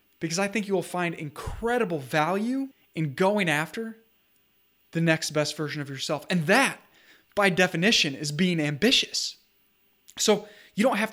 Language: English